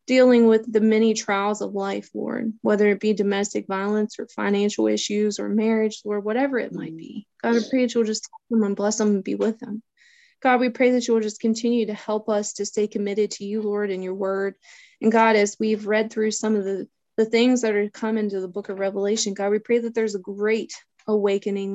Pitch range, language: 205-225 Hz, English